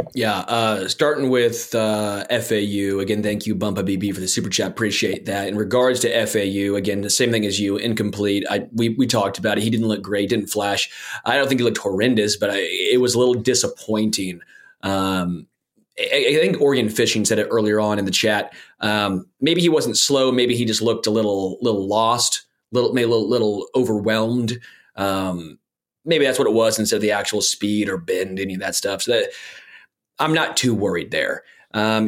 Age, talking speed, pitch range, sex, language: 20-39, 210 wpm, 105-135 Hz, male, English